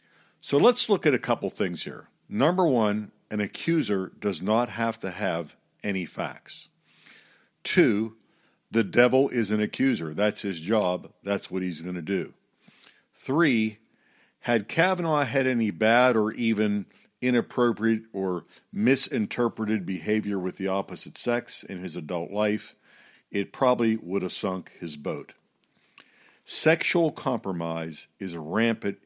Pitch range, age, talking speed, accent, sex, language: 95-115 Hz, 50-69, 135 wpm, American, male, English